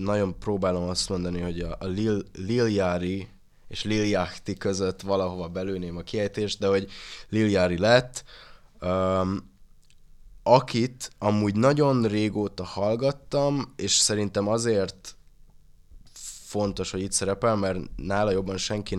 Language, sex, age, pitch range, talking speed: Hungarian, male, 20-39, 90-105 Hz, 105 wpm